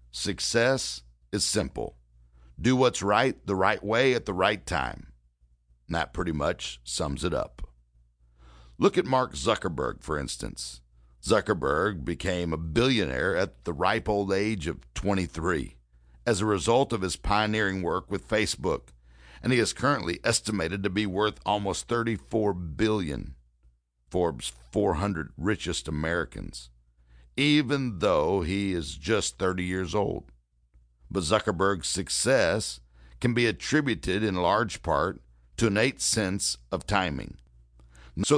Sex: male